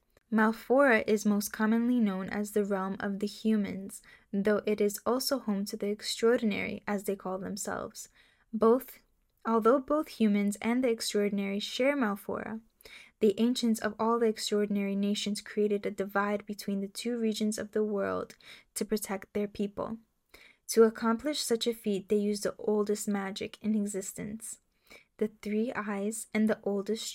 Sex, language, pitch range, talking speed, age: female, English, 200-225 Hz, 155 wpm, 10-29